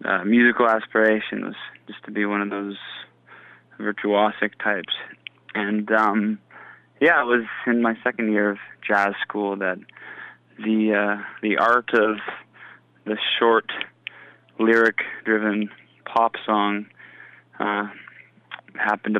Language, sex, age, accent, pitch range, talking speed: English, male, 20-39, American, 105-115 Hz, 115 wpm